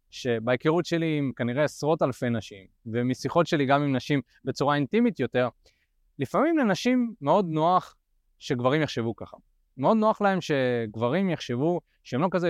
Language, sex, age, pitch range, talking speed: Hebrew, male, 30-49, 125-185 Hz, 145 wpm